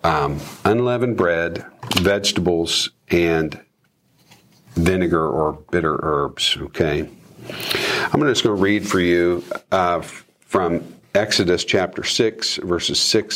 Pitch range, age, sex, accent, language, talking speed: 85-105 Hz, 50-69, male, American, English, 110 wpm